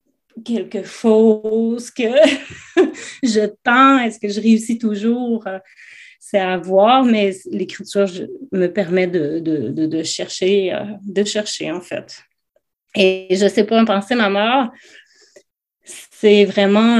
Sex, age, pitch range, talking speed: female, 30-49, 195-235 Hz, 135 wpm